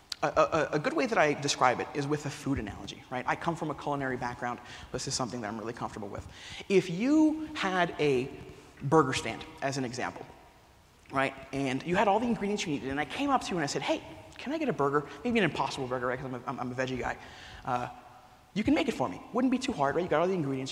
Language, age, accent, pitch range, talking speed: English, 30-49, American, 135-195 Hz, 260 wpm